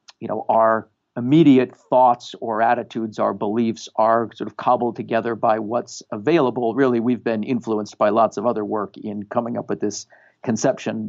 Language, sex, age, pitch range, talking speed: English, male, 50-69, 110-130 Hz, 175 wpm